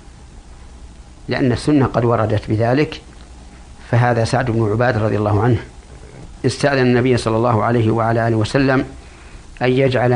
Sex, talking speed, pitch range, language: male, 130 wpm, 75-125 Hz, Arabic